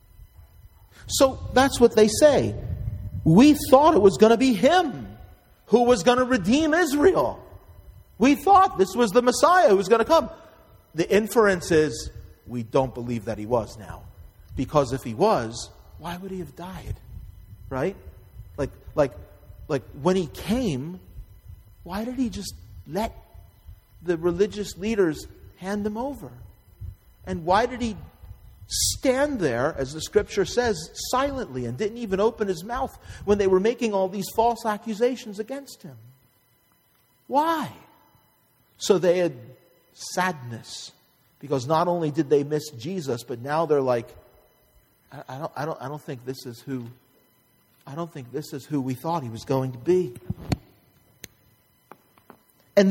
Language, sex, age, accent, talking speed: English, male, 40-59, American, 150 wpm